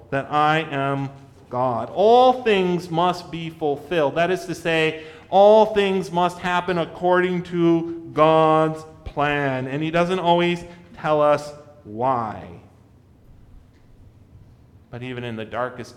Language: English